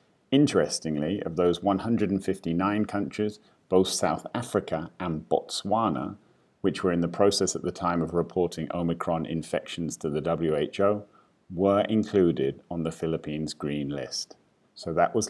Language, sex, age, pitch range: English, male, 40-59, 85-100 Hz